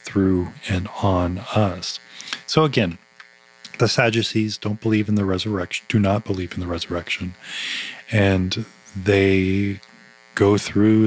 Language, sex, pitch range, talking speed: English, male, 90-115 Hz, 125 wpm